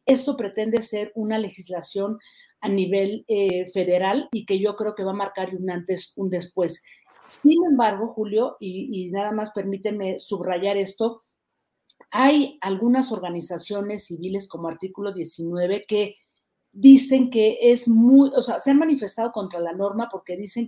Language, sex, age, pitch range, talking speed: Spanish, female, 40-59, 185-235 Hz, 155 wpm